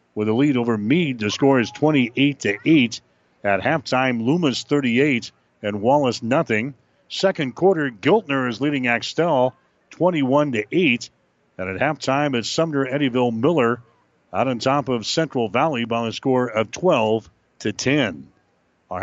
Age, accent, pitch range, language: 50-69, American, 120-155 Hz, English